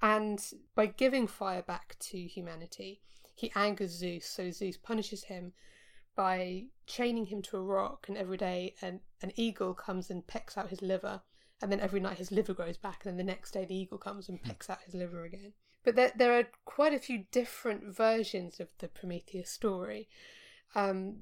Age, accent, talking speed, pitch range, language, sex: 20-39, British, 190 wpm, 180-215 Hz, English, female